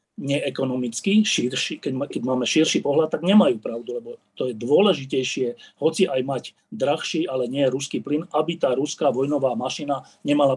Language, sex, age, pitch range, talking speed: Slovak, male, 40-59, 135-190 Hz, 165 wpm